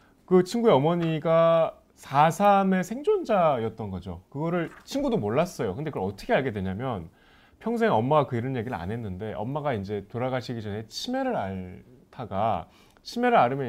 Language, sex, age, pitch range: Korean, male, 30-49, 105-170 Hz